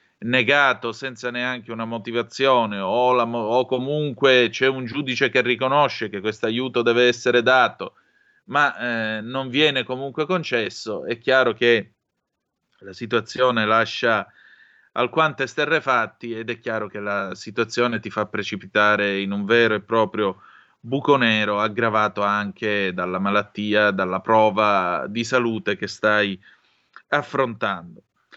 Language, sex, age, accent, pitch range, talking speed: Italian, male, 30-49, native, 105-130 Hz, 130 wpm